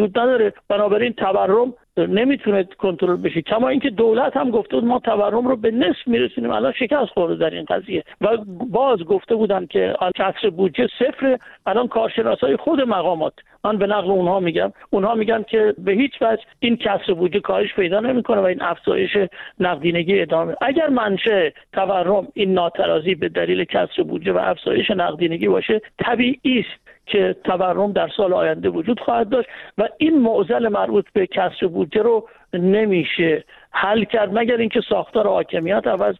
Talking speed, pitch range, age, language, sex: 160 wpm, 185-230 Hz, 50-69, Persian, male